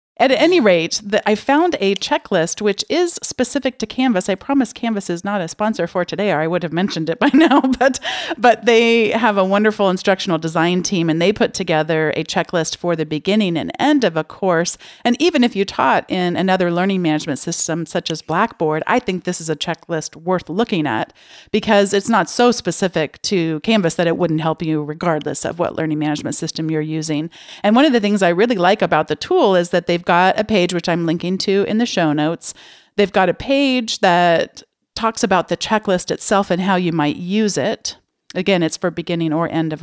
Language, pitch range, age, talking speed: English, 165-220 Hz, 40-59, 215 wpm